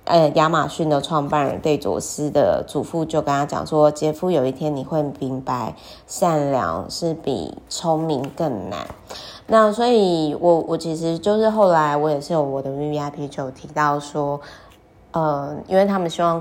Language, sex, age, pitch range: Chinese, female, 20-39, 140-170 Hz